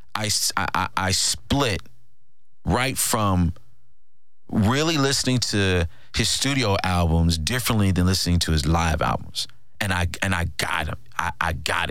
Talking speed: 140 wpm